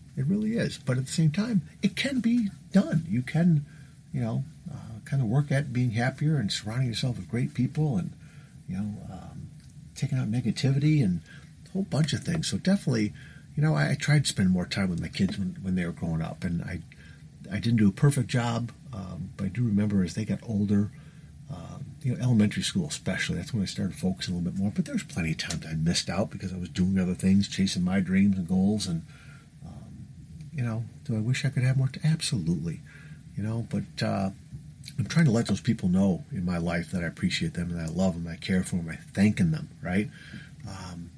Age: 50-69